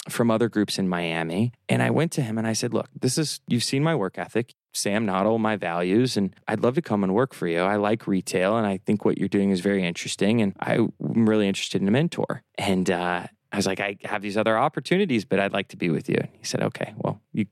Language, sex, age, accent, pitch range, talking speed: English, male, 20-39, American, 95-115 Hz, 265 wpm